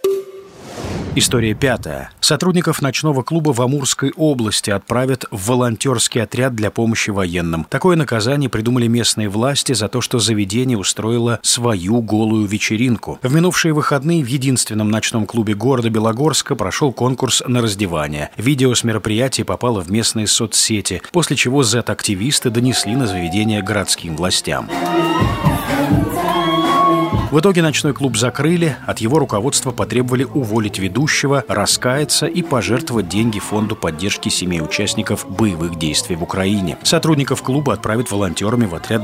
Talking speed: 130 wpm